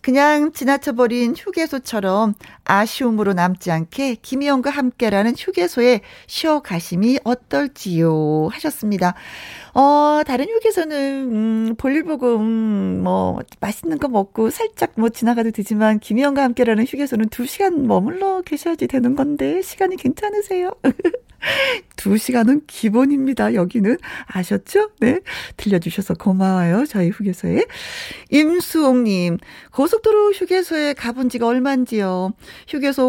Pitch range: 210-300 Hz